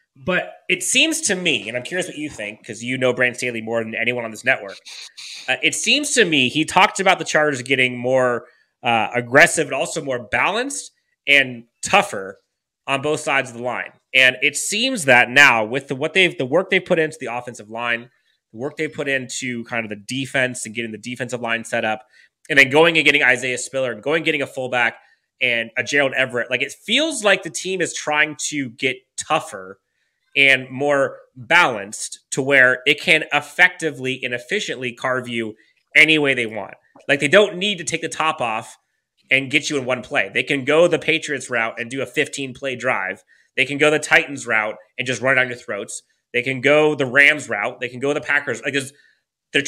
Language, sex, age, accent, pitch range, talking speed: English, male, 30-49, American, 125-155 Hz, 215 wpm